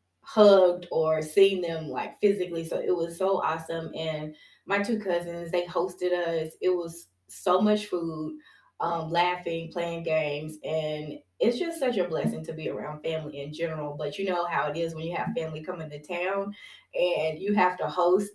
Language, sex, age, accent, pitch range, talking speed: English, female, 20-39, American, 160-190 Hz, 185 wpm